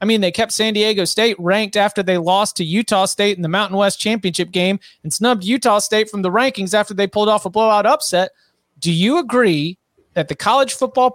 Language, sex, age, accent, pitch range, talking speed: English, male, 30-49, American, 180-215 Hz, 220 wpm